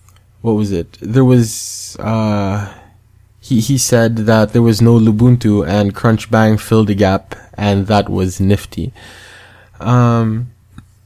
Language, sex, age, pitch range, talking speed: English, male, 20-39, 100-120 Hz, 130 wpm